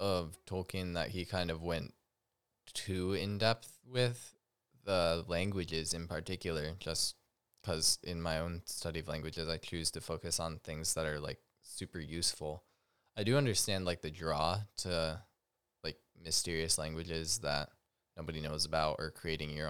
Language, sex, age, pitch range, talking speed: English, male, 10-29, 80-95 Hz, 150 wpm